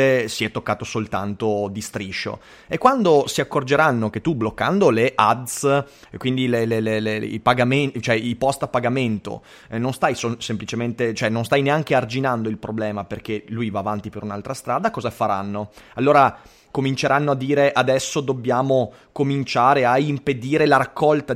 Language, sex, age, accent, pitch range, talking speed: Italian, male, 30-49, native, 115-140 Hz, 170 wpm